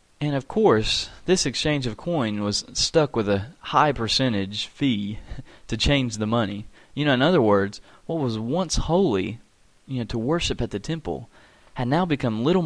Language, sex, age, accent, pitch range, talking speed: English, male, 30-49, American, 110-150 Hz, 180 wpm